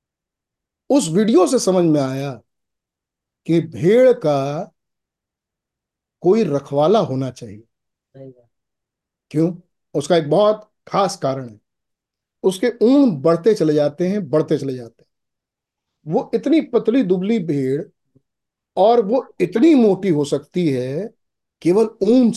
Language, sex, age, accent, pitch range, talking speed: Hindi, male, 50-69, native, 145-205 Hz, 120 wpm